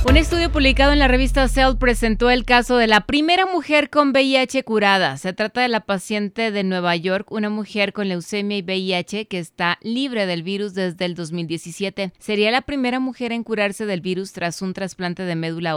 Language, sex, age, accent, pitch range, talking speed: Spanish, female, 30-49, Mexican, 165-205 Hz, 200 wpm